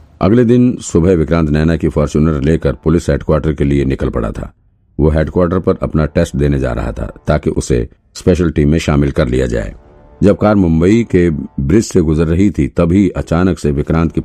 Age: 50-69